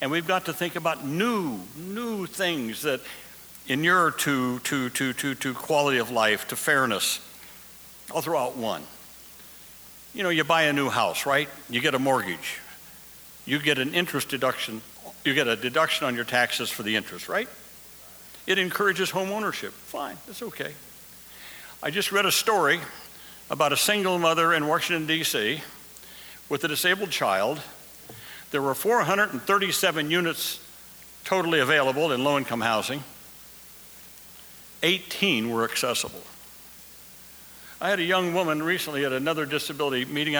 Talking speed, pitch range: 145 wpm, 130-180 Hz